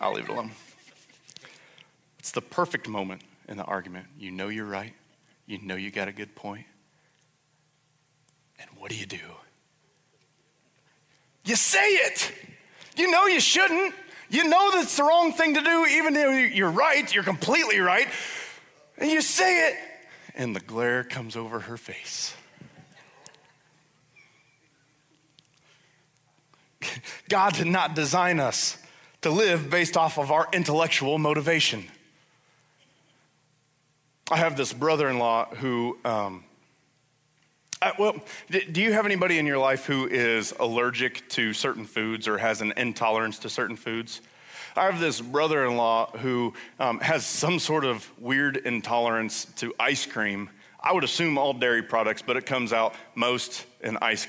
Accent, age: American, 30-49